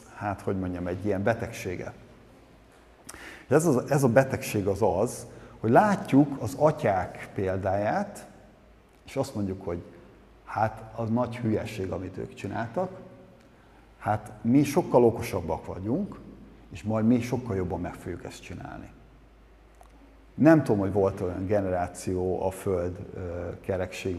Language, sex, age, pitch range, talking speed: Hungarian, male, 50-69, 95-120 Hz, 125 wpm